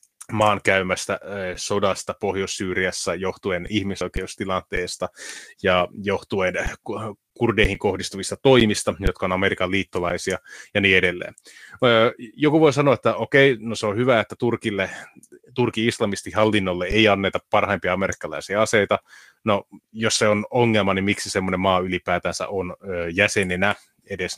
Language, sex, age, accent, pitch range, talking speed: Finnish, male, 30-49, native, 95-115 Hz, 120 wpm